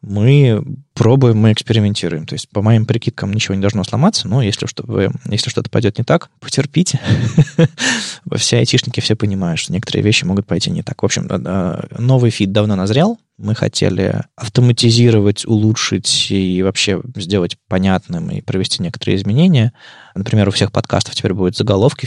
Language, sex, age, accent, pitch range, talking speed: Russian, male, 20-39, native, 95-130 Hz, 160 wpm